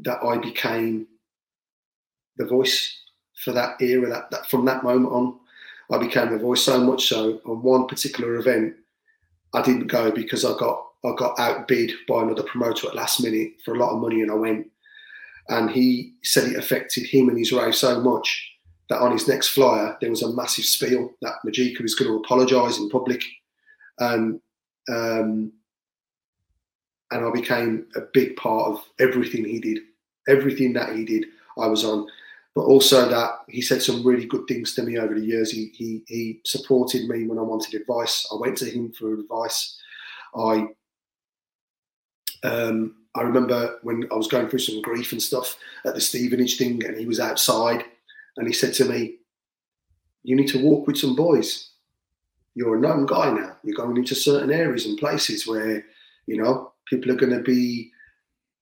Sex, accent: male, British